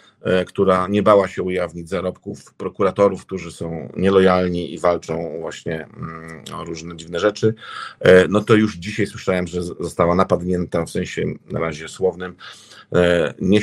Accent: native